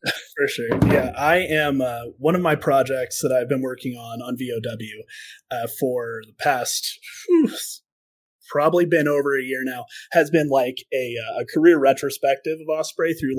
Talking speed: 160 wpm